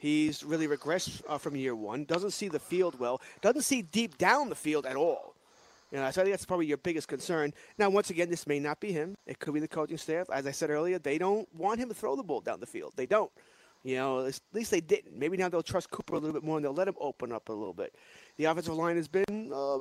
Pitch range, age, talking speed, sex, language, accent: 150-205 Hz, 30-49, 275 wpm, male, English, American